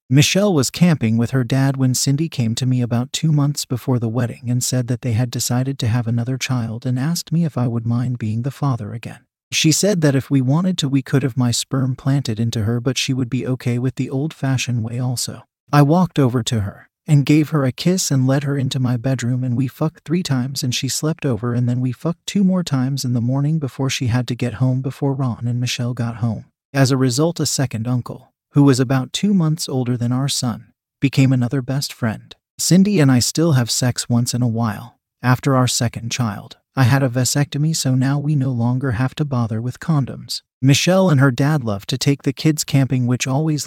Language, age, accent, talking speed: English, 40-59, American, 230 wpm